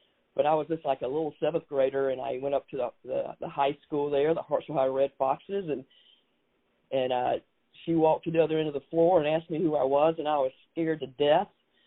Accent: American